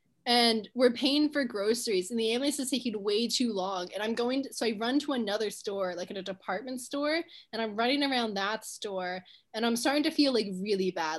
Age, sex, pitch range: 10-29, female, 220-285 Hz